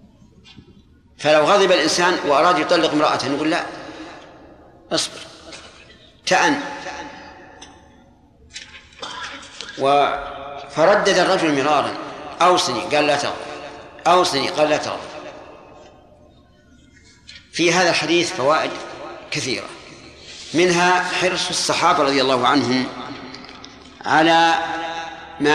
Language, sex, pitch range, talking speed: Arabic, male, 145-185 Hz, 80 wpm